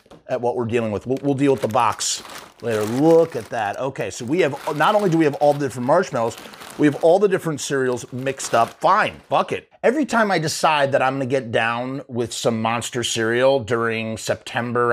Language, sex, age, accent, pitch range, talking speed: English, male, 30-49, American, 120-170 Hz, 215 wpm